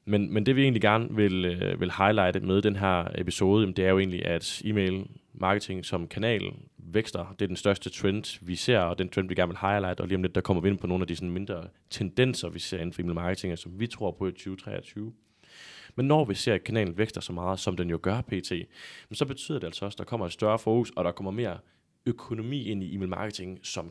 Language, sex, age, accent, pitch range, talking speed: Danish, male, 20-39, native, 90-105 Hz, 250 wpm